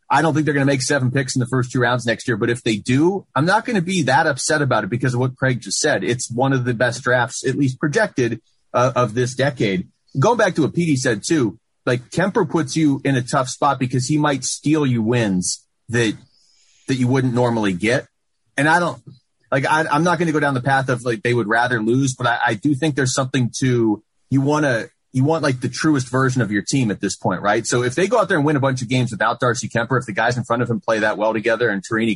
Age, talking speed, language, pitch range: 30-49, 280 wpm, English, 115-140 Hz